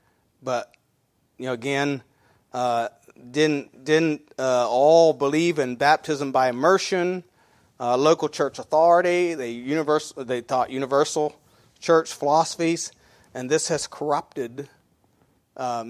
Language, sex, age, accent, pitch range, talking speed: English, male, 40-59, American, 125-165 Hz, 115 wpm